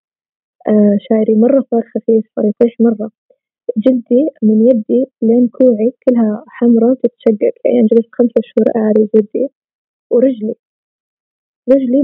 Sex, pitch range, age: female, 220-260 Hz, 20-39